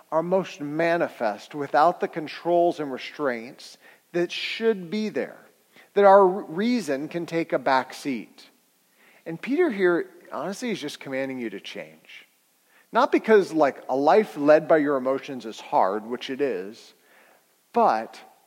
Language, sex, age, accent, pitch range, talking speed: English, male, 40-59, American, 155-240 Hz, 145 wpm